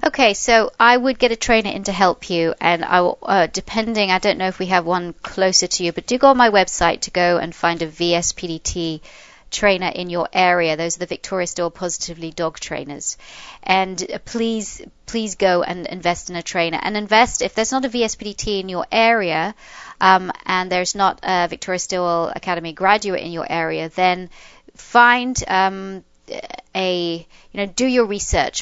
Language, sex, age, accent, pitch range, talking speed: English, female, 30-49, British, 170-210 Hz, 190 wpm